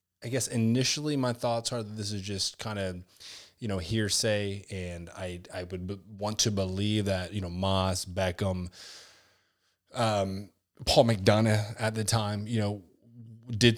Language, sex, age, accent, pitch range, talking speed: English, male, 20-39, American, 90-110 Hz, 160 wpm